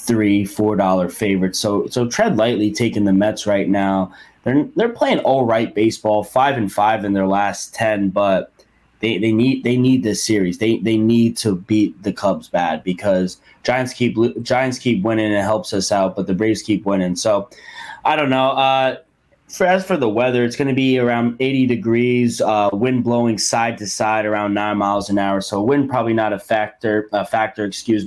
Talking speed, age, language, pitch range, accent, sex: 200 wpm, 20-39, English, 100-125 Hz, American, male